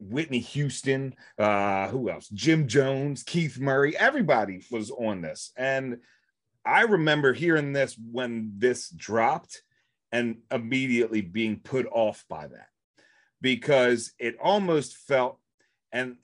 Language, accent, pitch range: English, American, 105-140 Hz